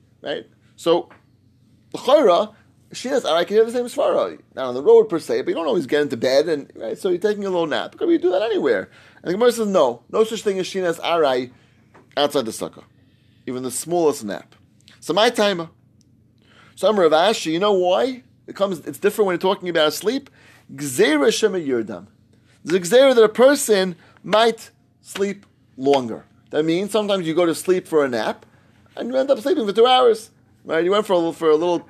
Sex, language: male, English